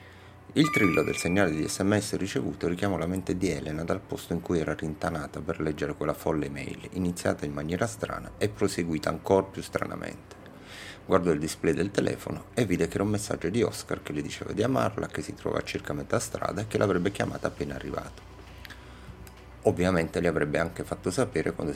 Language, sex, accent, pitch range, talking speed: Italian, male, native, 80-100 Hz, 195 wpm